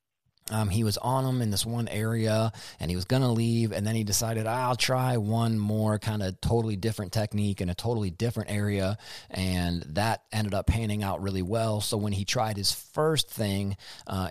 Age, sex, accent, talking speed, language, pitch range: 30-49, male, American, 205 wpm, English, 95-115 Hz